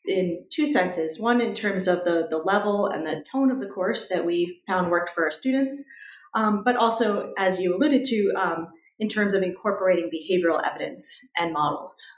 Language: English